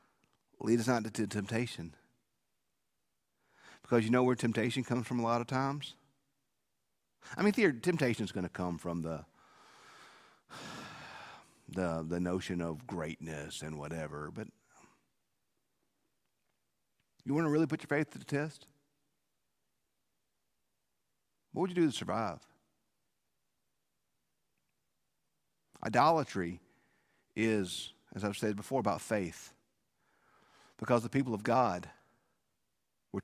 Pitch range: 85-135 Hz